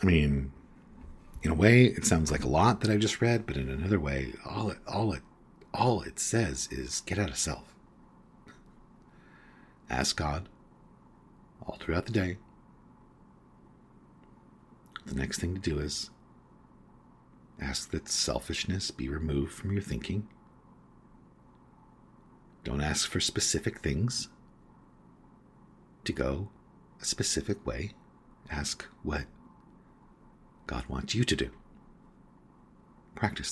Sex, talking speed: male, 120 wpm